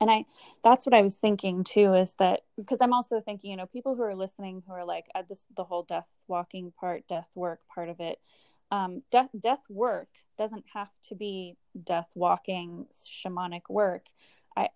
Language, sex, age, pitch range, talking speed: English, female, 20-39, 180-210 Hz, 195 wpm